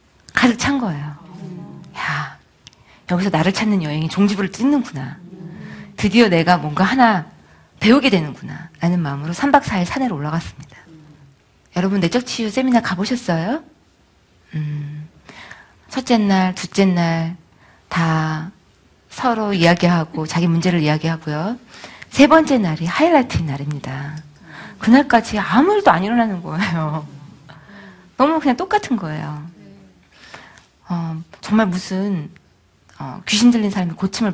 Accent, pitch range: native, 160-220 Hz